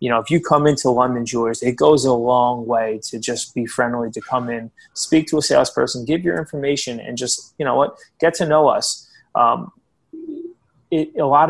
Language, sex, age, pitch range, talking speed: English, male, 20-39, 115-145 Hz, 205 wpm